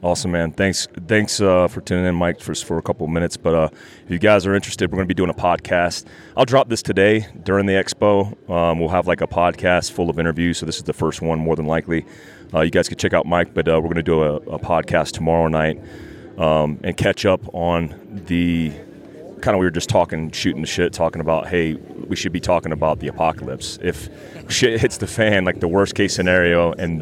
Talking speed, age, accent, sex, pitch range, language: 240 wpm, 30-49, American, male, 85-100 Hz, English